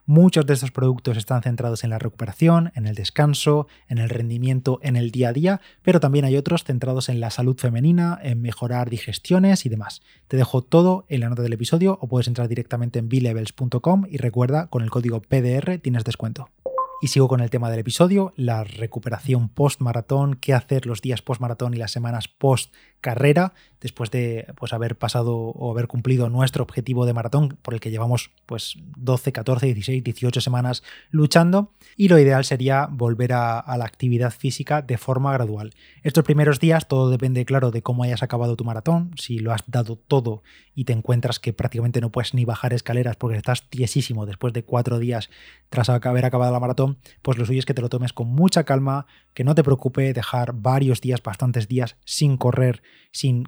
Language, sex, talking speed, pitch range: Spanish, male, 195 wpm, 120-135 Hz